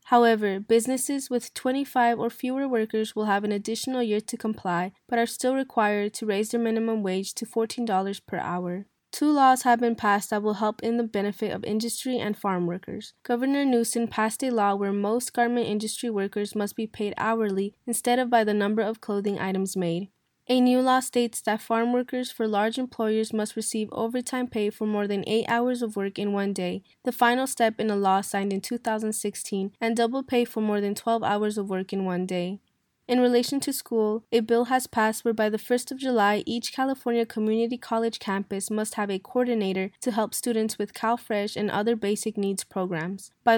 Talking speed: 200 wpm